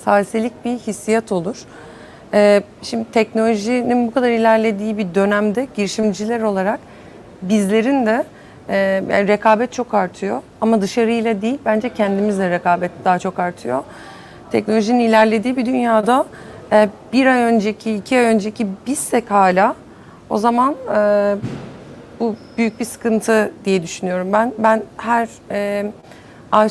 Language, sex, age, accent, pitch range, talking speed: English, female, 40-59, Turkish, 205-235 Hz, 125 wpm